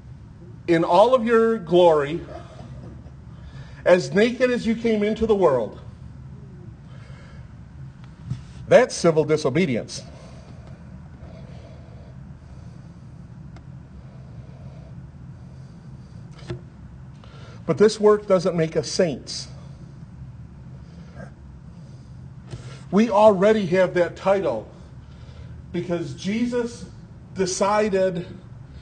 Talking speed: 65 wpm